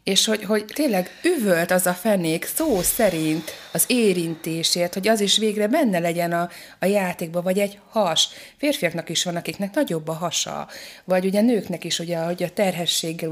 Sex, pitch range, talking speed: female, 170-210 Hz, 180 wpm